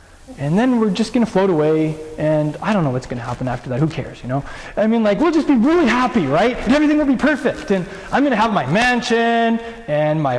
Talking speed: 260 wpm